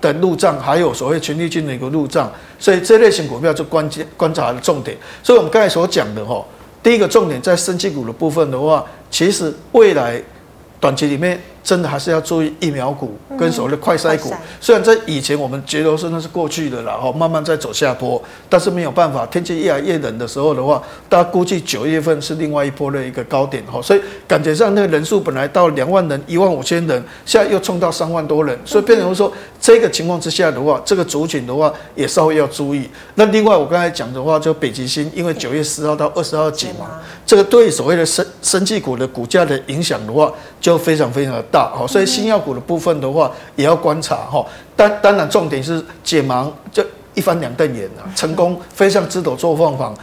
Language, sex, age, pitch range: Chinese, male, 60-79, 145-180 Hz